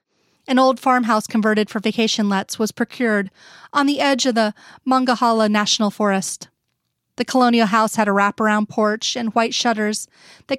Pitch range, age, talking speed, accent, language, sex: 210-245 Hz, 30-49, 160 wpm, American, English, female